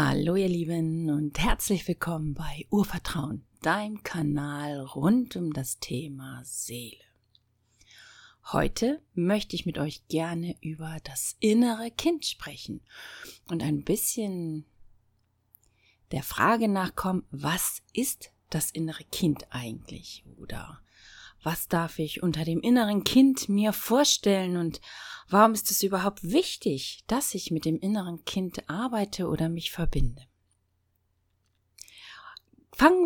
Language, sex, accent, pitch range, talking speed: German, female, German, 150-215 Hz, 120 wpm